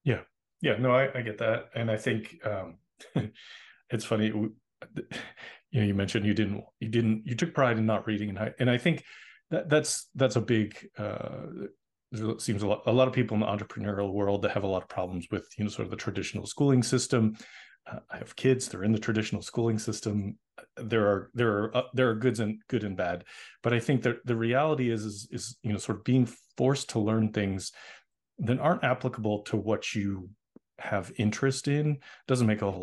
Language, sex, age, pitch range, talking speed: English, male, 40-59, 105-125 Hz, 220 wpm